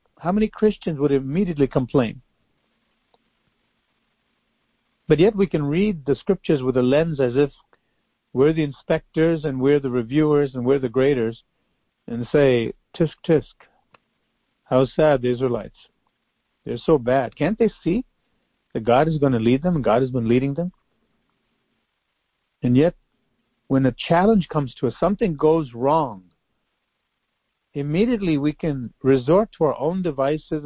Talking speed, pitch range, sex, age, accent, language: 145 wpm, 125-160 Hz, male, 50-69, American, English